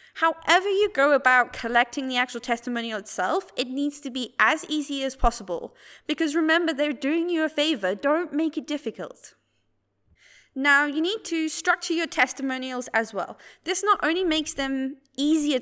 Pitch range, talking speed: 245-315 Hz, 165 wpm